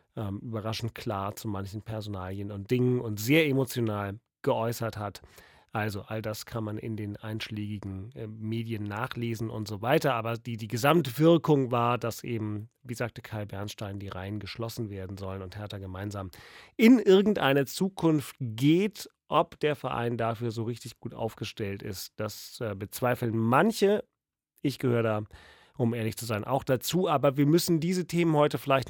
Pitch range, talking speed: 110-145 Hz, 165 wpm